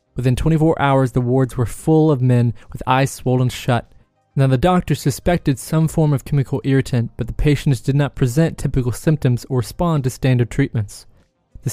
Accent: American